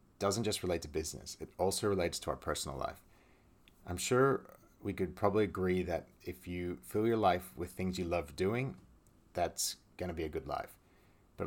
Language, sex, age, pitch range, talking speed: English, male, 30-49, 85-100 Hz, 195 wpm